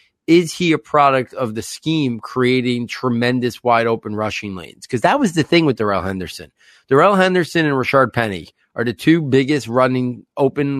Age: 30-49